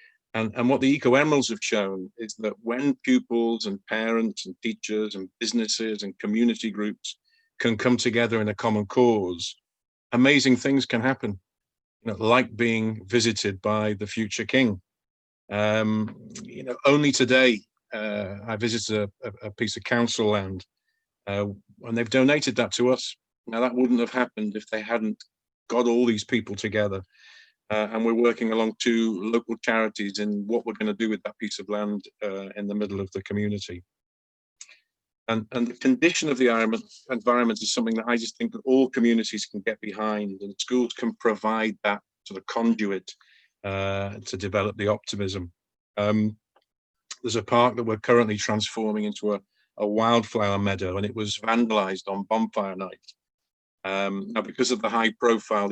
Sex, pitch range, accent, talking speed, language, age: male, 105-120 Hz, British, 170 wpm, English, 50-69